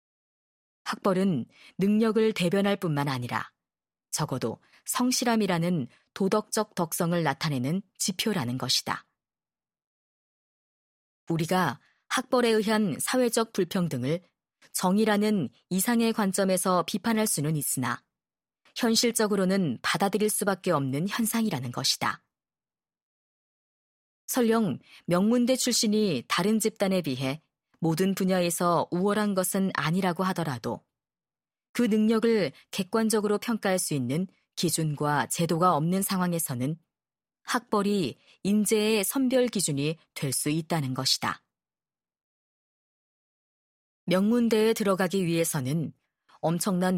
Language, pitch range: Korean, 165-215 Hz